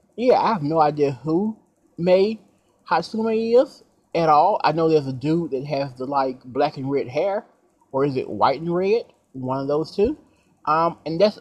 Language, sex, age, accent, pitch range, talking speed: English, male, 30-49, American, 125-180 Hz, 195 wpm